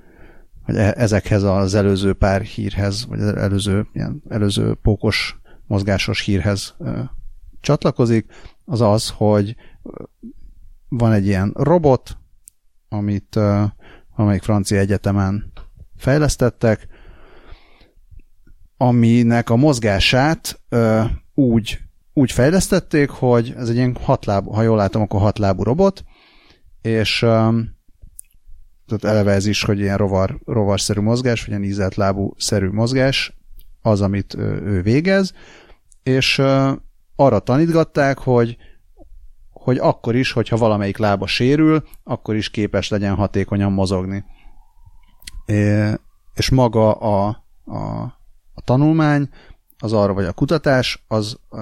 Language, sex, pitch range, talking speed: Hungarian, male, 100-120 Hz, 110 wpm